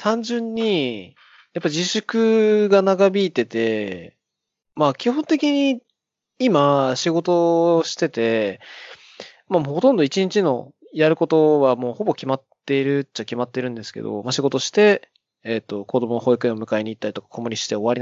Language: Japanese